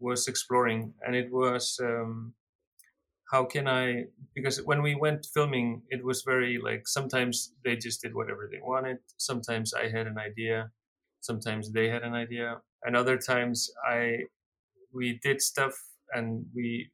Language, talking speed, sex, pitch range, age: English, 155 wpm, male, 110-130 Hz, 30-49